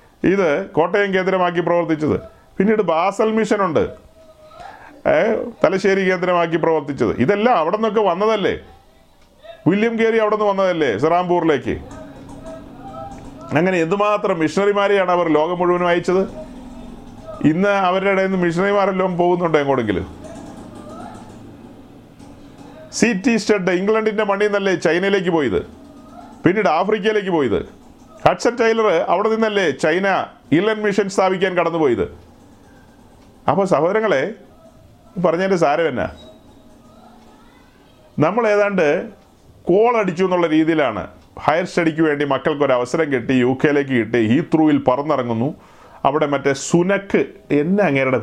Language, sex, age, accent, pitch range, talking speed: Malayalam, male, 40-59, native, 155-210 Hz, 100 wpm